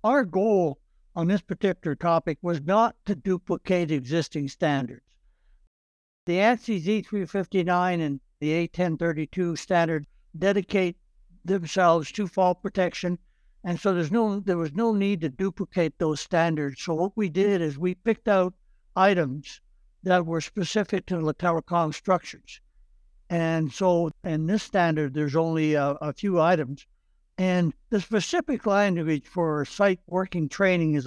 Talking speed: 150 wpm